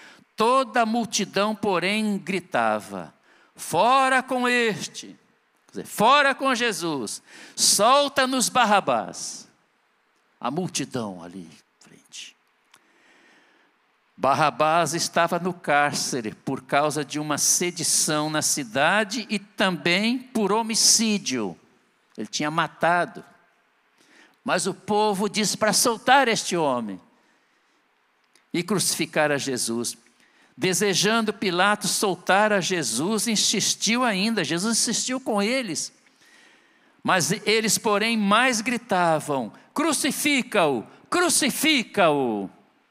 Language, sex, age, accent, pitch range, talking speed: Portuguese, male, 60-79, Brazilian, 170-240 Hz, 95 wpm